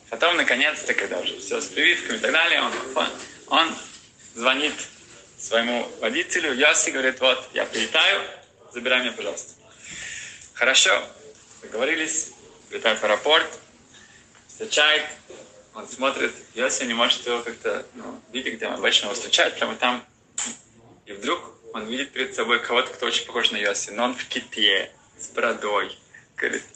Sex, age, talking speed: male, 20-39, 140 wpm